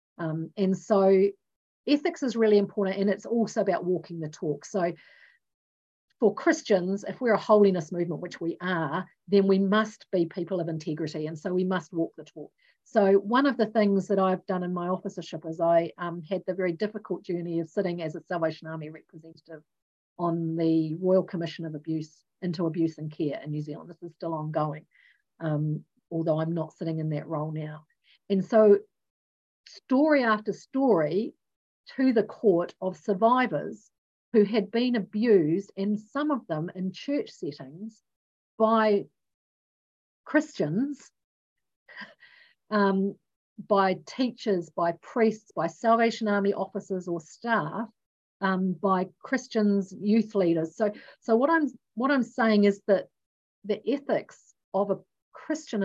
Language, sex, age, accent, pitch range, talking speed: English, female, 40-59, Australian, 165-215 Hz, 155 wpm